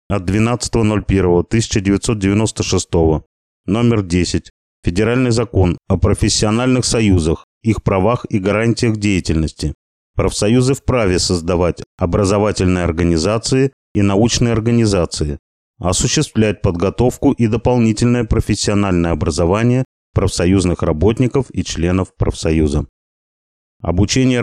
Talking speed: 85 wpm